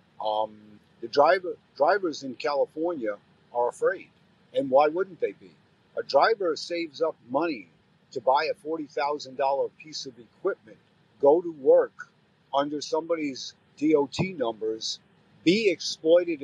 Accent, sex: American, male